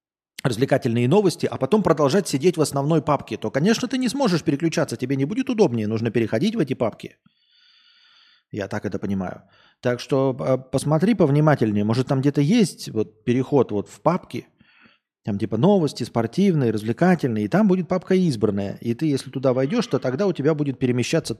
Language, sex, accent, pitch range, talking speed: Russian, male, native, 115-155 Hz, 175 wpm